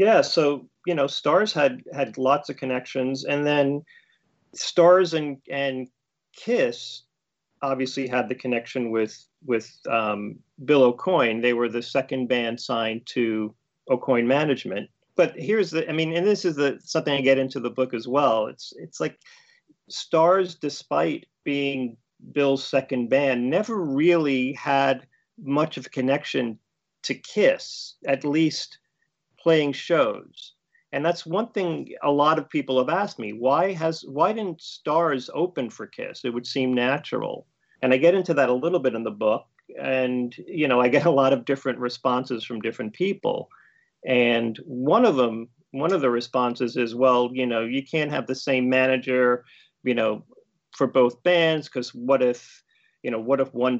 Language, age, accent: English, 40-59, American